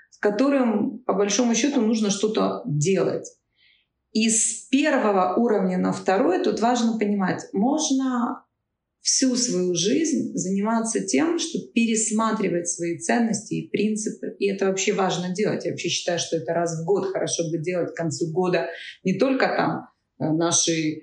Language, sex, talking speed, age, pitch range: Russian, female, 145 wpm, 30-49, 175-230 Hz